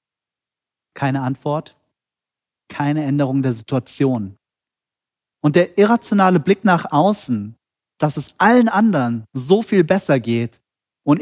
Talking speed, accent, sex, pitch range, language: 110 wpm, German, male, 115-155 Hz, German